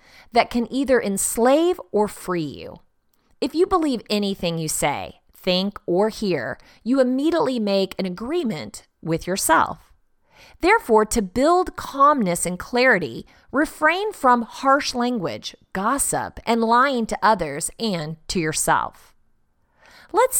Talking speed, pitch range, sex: 125 wpm, 185-275 Hz, female